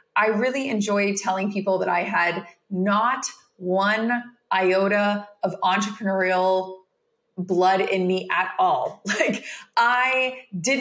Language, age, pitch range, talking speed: English, 30-49, 180-230 Hz, 115 wpm